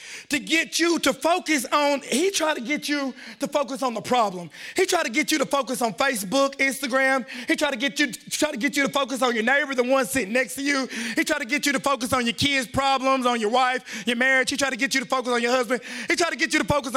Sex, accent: male, American